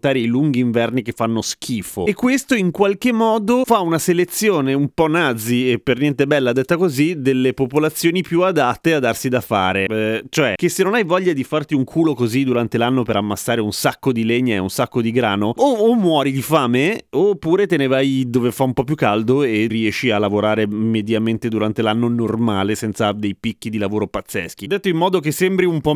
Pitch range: 120-185 Hz